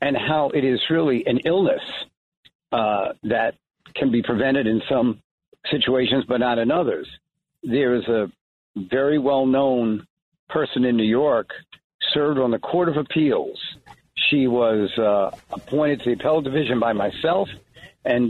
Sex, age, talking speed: male, 60-79, 150 wpm